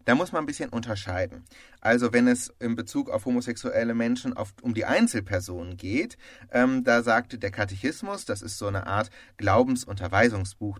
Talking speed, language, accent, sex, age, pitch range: 165 wpm, German, German, male, 30-49, 100-130 Hz